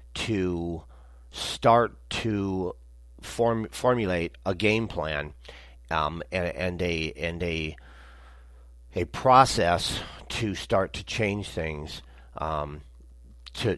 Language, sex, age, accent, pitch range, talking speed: English, male, 40-59, American, 65-100 Hz, 100 wpm